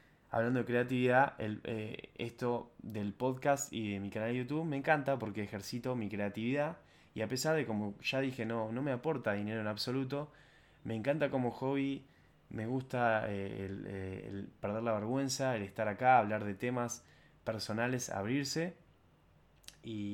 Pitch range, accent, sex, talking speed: 100-130 Hz, Argentinian, male, 165 wpm